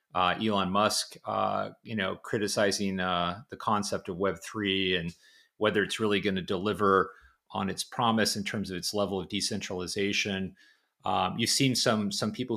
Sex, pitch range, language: male, 95-115 Hz, English